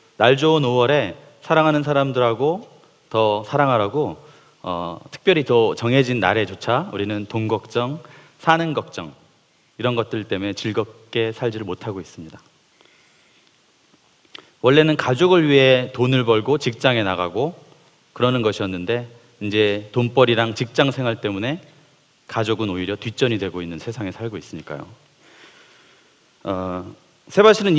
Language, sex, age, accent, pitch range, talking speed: English, male, 30-49, Korean, 110-150 Hz, 100 wpm